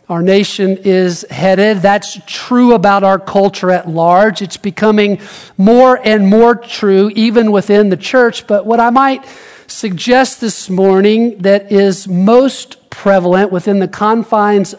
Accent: American